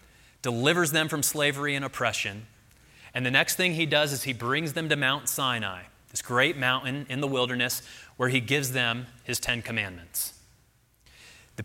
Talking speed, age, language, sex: 170 wpm, 30-49, English, male